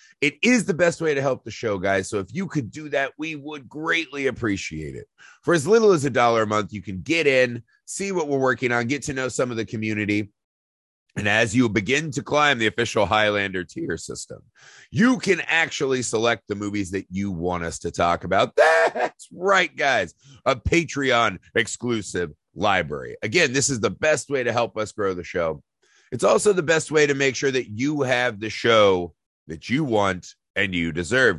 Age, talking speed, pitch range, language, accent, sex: 30-49, 205 wpm, 105-145 Hz, English, American, male